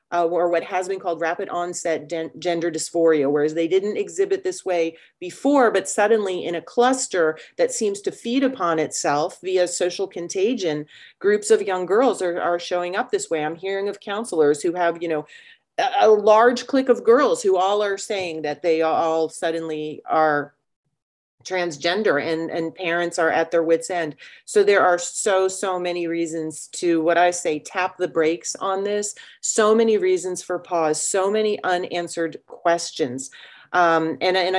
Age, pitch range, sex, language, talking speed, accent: 40-59, 160-195 Hz, female, English, 175 wpm, American